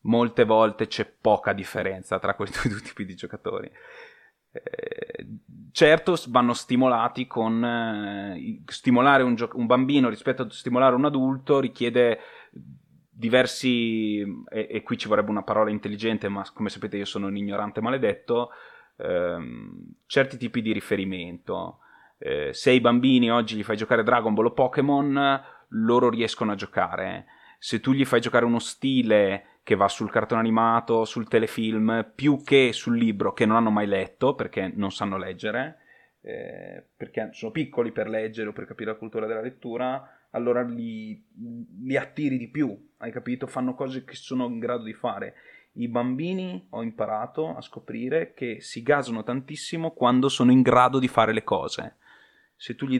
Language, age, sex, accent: Italian, 20-39, male, native